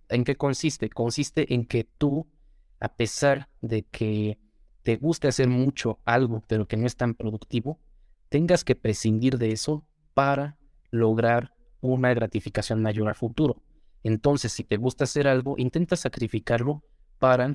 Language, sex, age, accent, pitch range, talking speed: Spanish, male, 20-39, Mexican, 110-130 Hz, 145 wpm